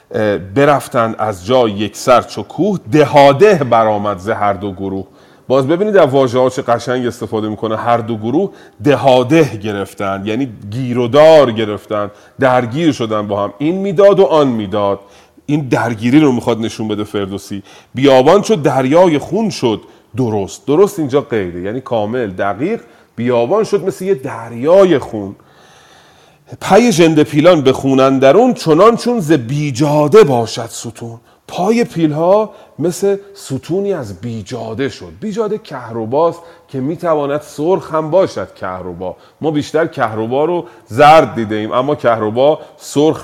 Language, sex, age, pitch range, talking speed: Persian, male, 40-59, 110-155 Hz, 145 wpm